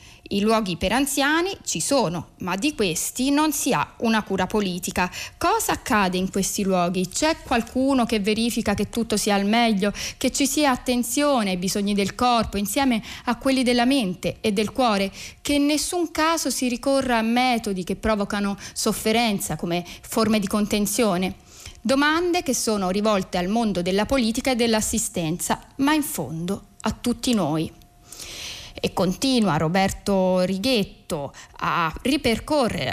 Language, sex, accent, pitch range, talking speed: Italian, female, native, 190-250 Hz, 150 wpm